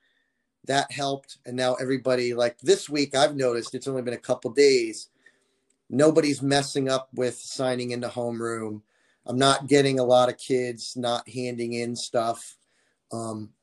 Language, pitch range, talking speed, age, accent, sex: English, 125-140 Hz, 155 wpm, 30-49, American, male